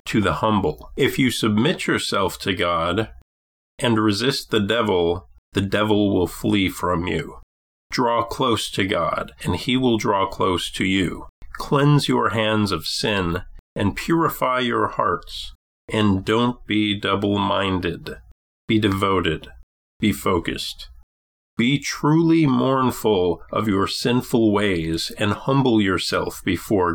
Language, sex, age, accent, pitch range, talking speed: English, male, 40-59, American, 90-120 Hz, 130 wpm